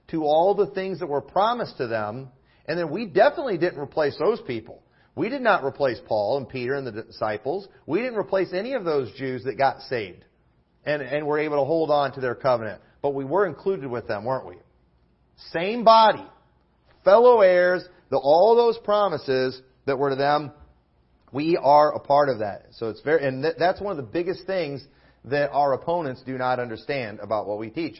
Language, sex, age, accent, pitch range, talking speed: English, male, 40-59, American, 130-175 Hz, 200 wpm